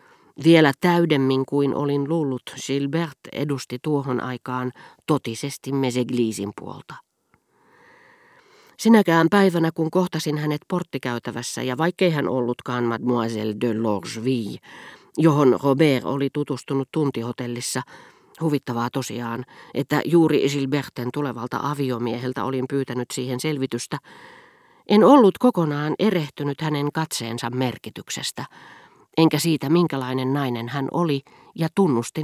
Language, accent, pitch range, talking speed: Finnish, native, 125-165 Hz, 105 wpm